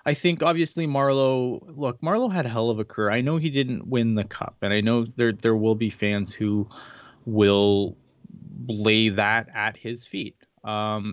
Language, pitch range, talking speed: English, 95-120 Hz, 190 wpm